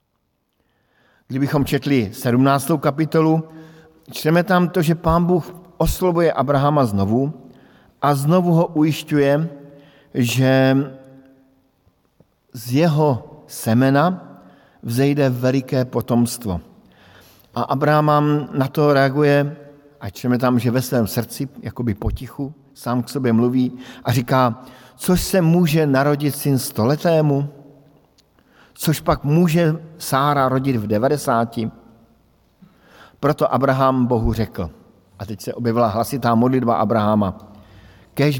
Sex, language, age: male, Slovak, 50-69